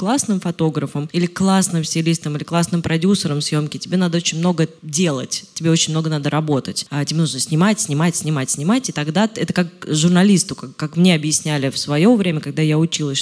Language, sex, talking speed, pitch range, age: Russian, female, 180 wpm, 155-185 Hz, 20-39